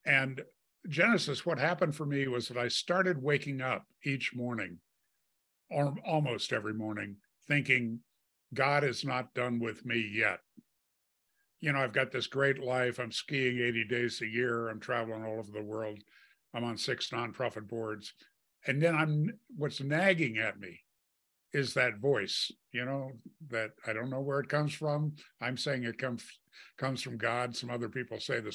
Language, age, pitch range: English, 50-69, 115-140 Hz